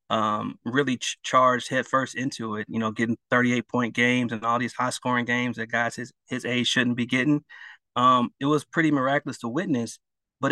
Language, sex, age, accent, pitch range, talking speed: English, male, 30-49, American, 120-140 Hz, 185 wpm